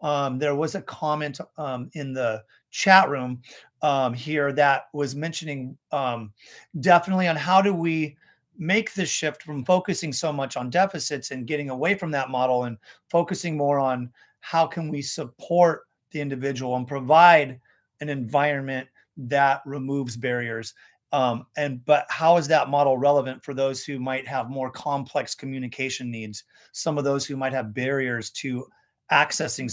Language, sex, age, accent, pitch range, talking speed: English, male, 30-49, American, 130-160 Hz, 160 wpm